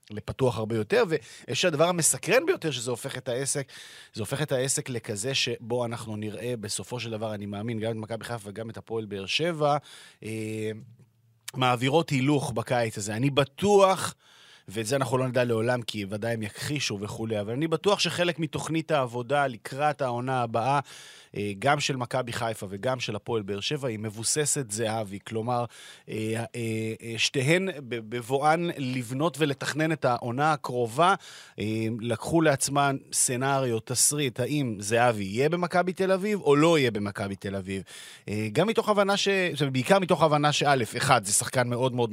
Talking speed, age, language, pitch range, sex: 155 wpm, 30-49, Hebrew, 115-145 Hz, male